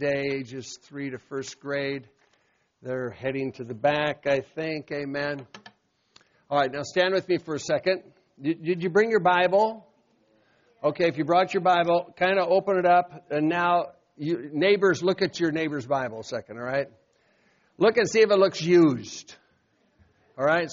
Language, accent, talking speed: English, American, 175 wpm